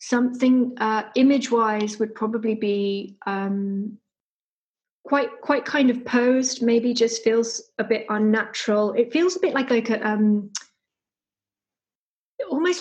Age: 30-49